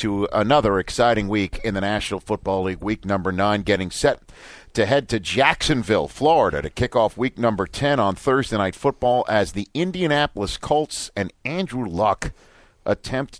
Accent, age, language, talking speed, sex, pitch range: American, 50-69, English, 165 wpm, male, 100-130 Hz